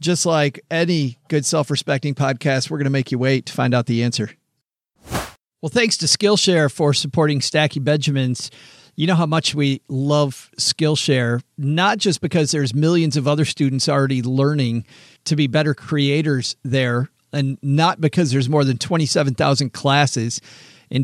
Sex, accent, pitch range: male, American, 135-160 Hz